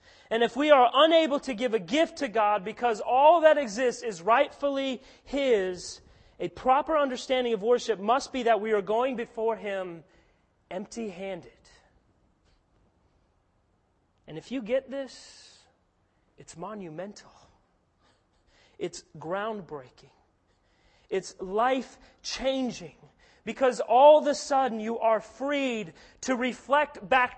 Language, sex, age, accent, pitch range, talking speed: English, male, 30-49, American, 190-290 Hz, 125 wpm